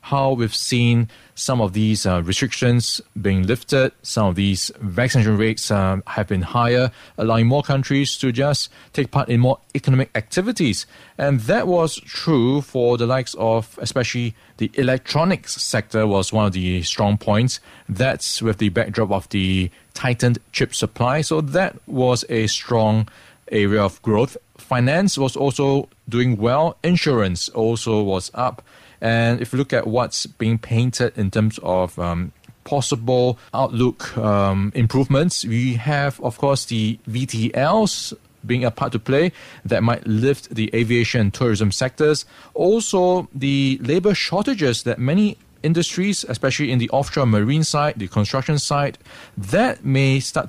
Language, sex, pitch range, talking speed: English, male, 110-135 Hz, 150 wpm